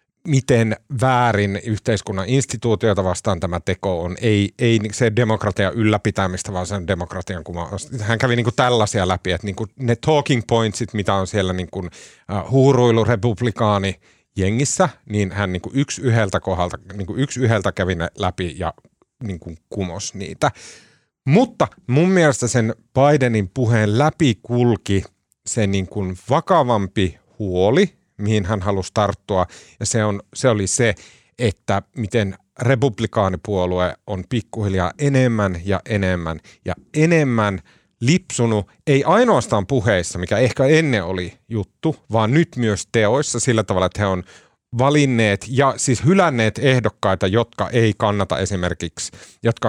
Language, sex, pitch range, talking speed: Finnish, male, 95-120 Hz, 140 wpm